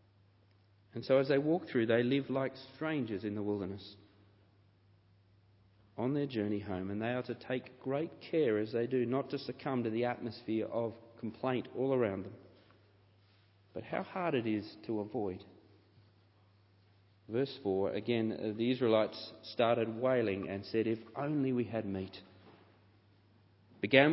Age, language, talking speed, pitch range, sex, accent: 40-59, English, 150 wpm, 100-135 Hz, male, Australian